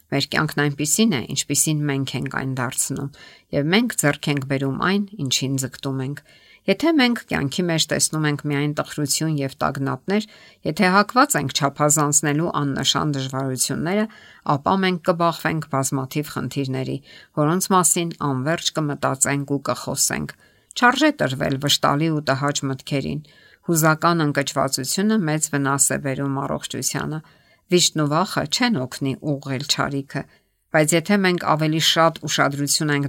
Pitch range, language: 140-170 Hz, English